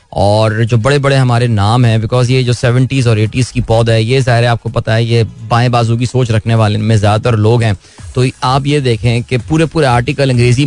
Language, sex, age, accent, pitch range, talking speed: Hindi, male, 20-39, native, 115-135 Hz, 230 wpm